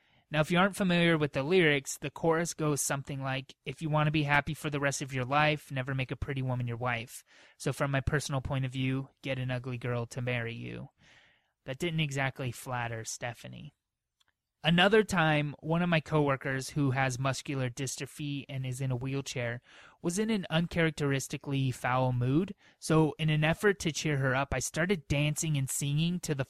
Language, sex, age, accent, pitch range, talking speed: English, male, 20-39, American, 130-155 Hz, 195 wpm